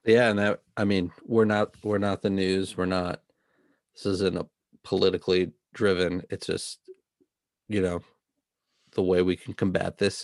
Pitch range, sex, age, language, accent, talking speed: 90-100 Hz, male, 40-59, English, American, 165 wpm